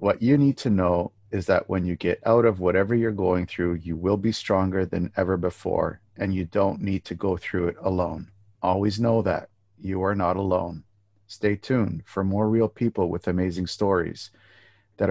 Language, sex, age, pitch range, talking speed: English, male, 50-69, 95-110 Hz, 195 wpm